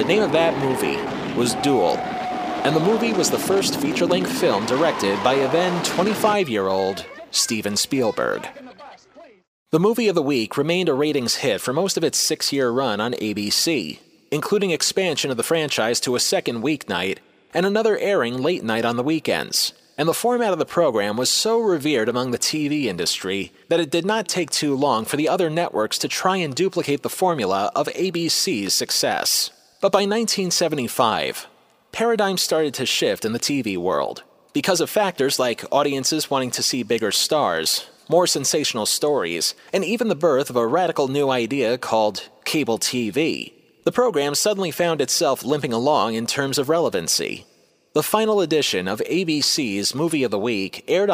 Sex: male